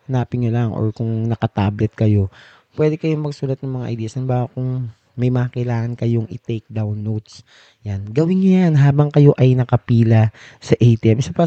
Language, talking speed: Filipino, 180 wpm